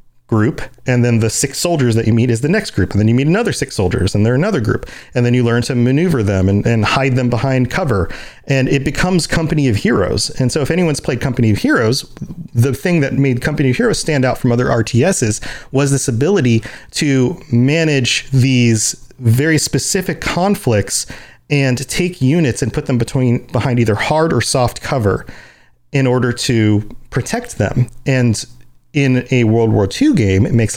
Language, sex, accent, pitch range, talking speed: English, male, American, 115-140 Hz, 195 wpm